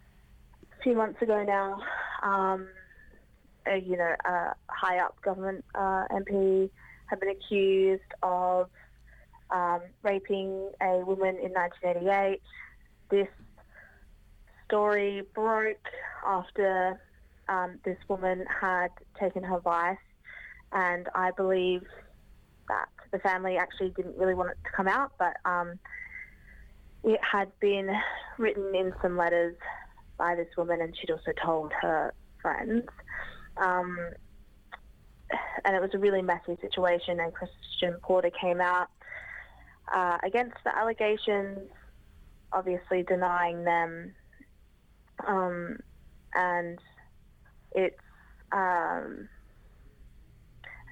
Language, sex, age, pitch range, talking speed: English, female, 20-39, 180-200 Hz, 105 wpm